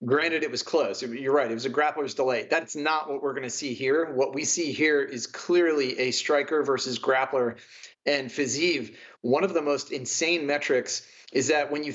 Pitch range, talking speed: 130-160 Hz, 205 wpm